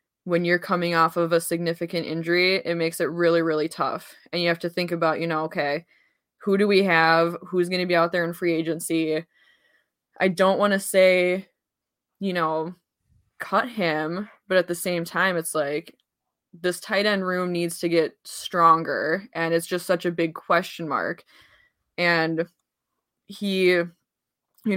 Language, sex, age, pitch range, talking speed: English, female, 20-39, 165-185 Hz, 170 wpm